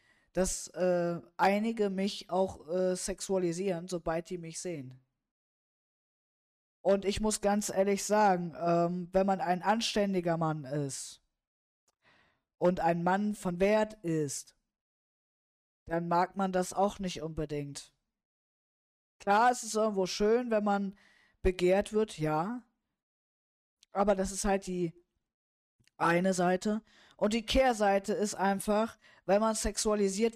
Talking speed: 125 wpm